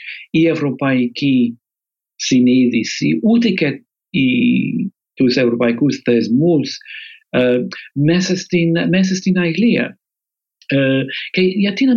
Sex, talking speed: male, 85 wpm